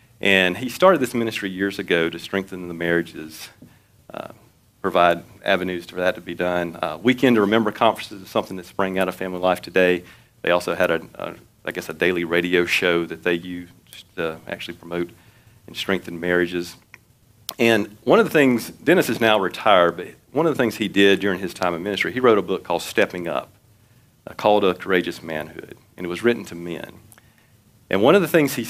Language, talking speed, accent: English, 195 wpm, American